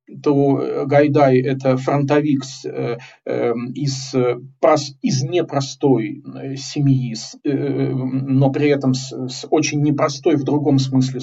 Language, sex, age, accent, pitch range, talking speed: Russian, male, 40-59, native, 130-150 Hz, 105 wpm